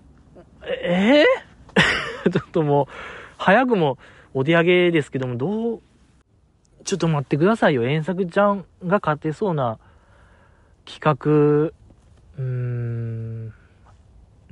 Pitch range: 115-185 Hz